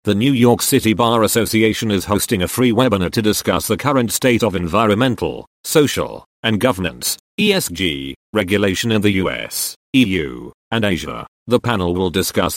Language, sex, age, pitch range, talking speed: English, male, 40-59, 100-125 Hz, 160 wpm